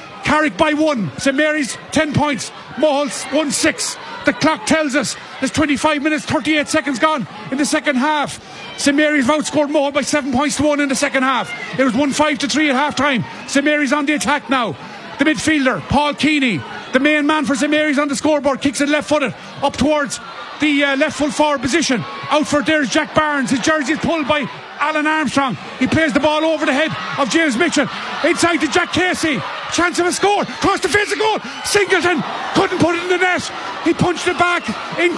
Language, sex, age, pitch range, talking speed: English, male, 30-49, 280-315 Hz, 205 wpm